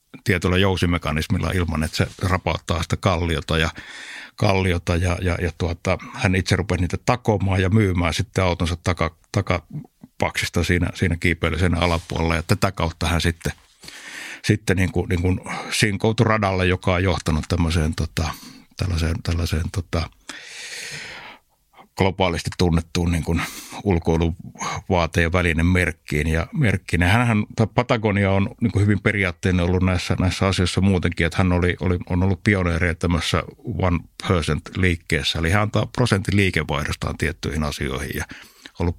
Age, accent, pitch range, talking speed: 60-79, native, 85-95 Hz, 135 wpm